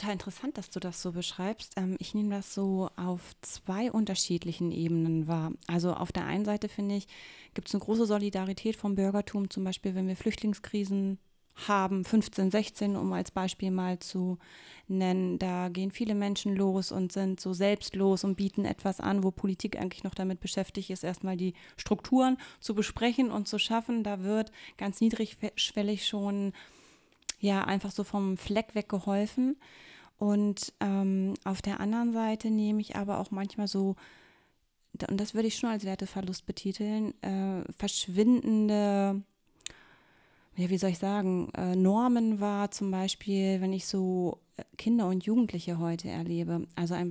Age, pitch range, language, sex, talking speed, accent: 30-49, 185-210 Hz, German, female, 160 wpm, German